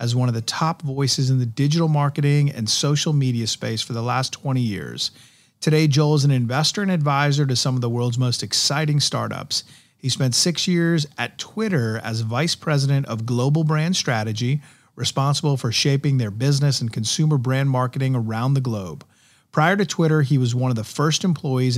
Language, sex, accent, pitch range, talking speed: English, male, American, 120-150 Hz, 190 wpm